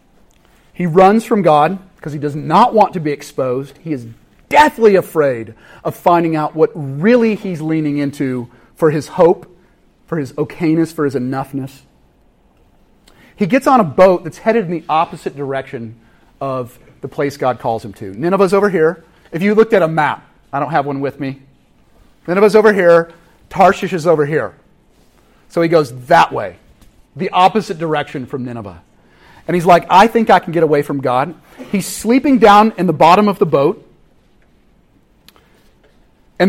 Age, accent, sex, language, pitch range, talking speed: 40-59, American, male, English, 145-200 Hz, 170 wpm